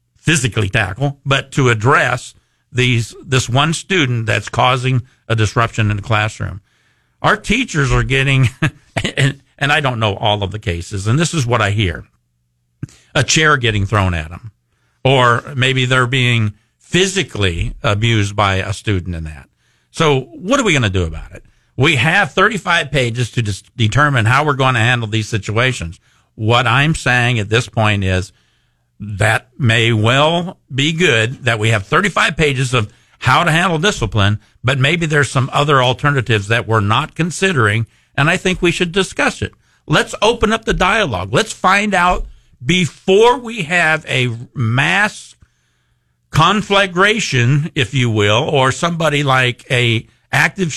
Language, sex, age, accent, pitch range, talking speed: English, male, 50-69, American, 110-150 Hz, 160 wpm